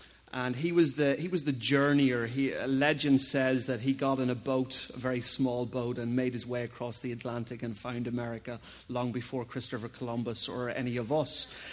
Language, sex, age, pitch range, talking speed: English, male, 30-49, 125-145 Hz, 200 wpm